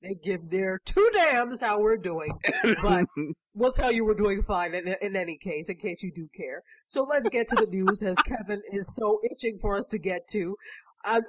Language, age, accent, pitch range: English, 30-49, American, 180-230 Hz